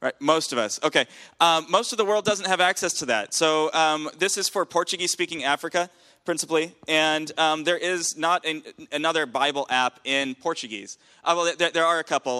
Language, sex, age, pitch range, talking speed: English, male, 20-39, 130-165 Hz, 205 wpm